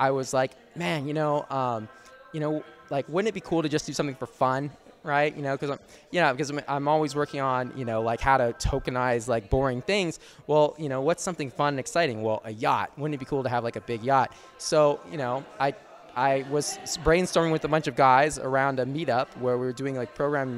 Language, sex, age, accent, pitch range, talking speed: English, male, 20-39, American, 130-155 Hz, 245 wpm